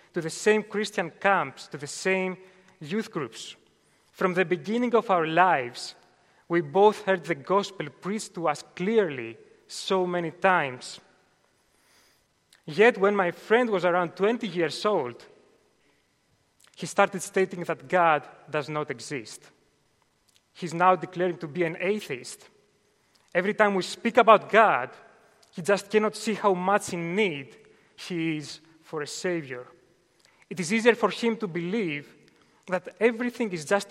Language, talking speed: English, 145 wpm